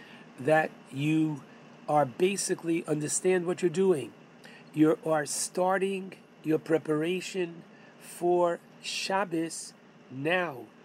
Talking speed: 90 wpm